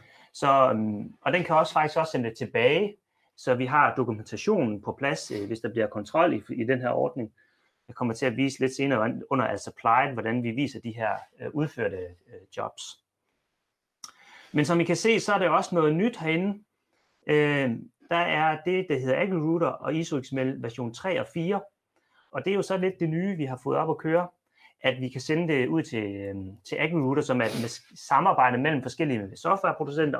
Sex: male